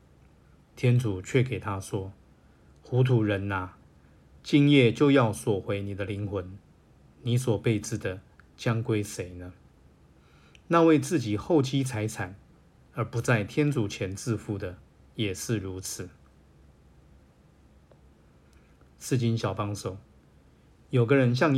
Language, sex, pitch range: Chinese, male, 75-120 Hz